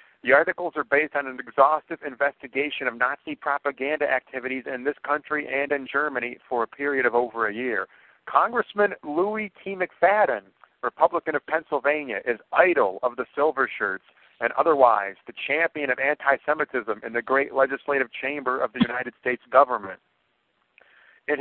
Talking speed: 155 wpm